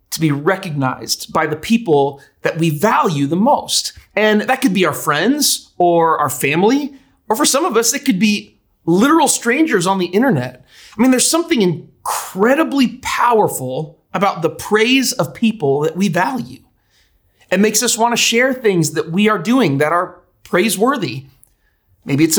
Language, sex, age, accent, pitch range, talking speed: English, male, 30-49, American, 150-230 Hz, 170 wpm